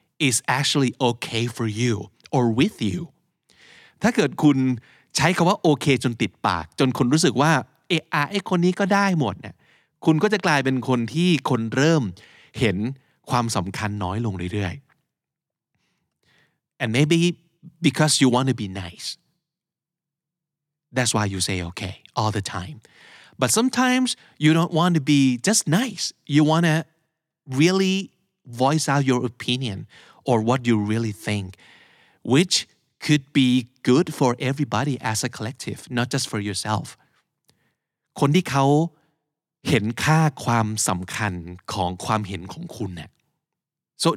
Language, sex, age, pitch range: Thai, male, 30-49, 110-155 Hz